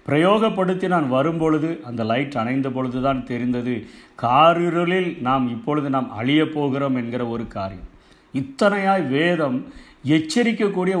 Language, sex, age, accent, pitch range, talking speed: Tamil, male, 50-69, native, 135-170 Hz, 115 wpm